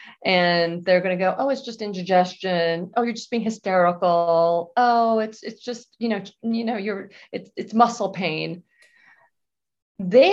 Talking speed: 165 wpm